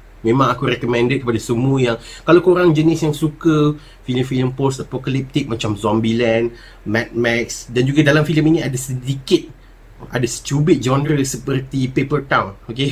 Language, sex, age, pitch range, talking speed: Malay, male, 30-49, 115-150 Hz, 150 wpm